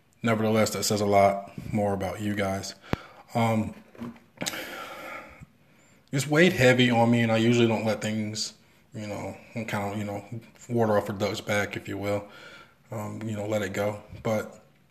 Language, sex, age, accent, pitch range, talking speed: English, male, 20-39, American, 105-115 Hz, 170 wpm